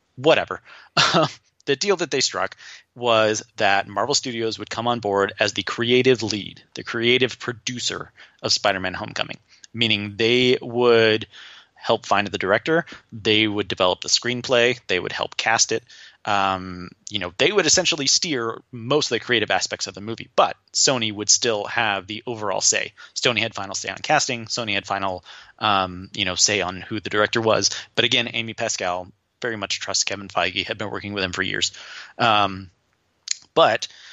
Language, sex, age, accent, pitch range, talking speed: English, male, 30-49, American, 105-125 Hz, 175 wpm